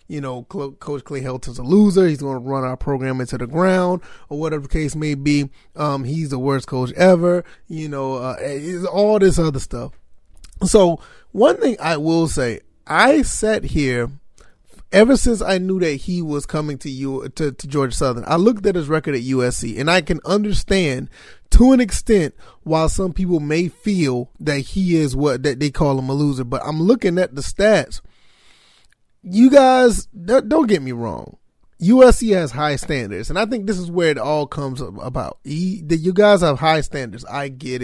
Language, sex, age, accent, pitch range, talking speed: English, male, 30-49, American, 135-180 Hz, 190 wpm